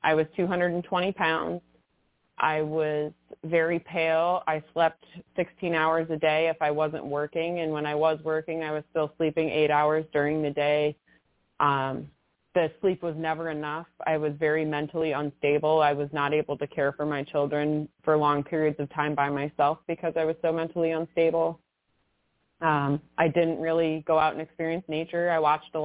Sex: female